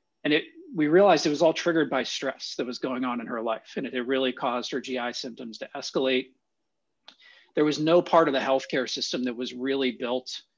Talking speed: 215 wpm